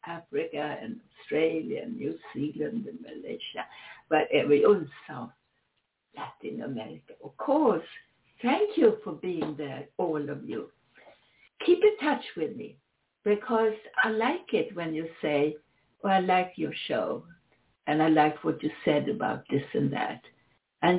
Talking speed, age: 145 wpm, 60-79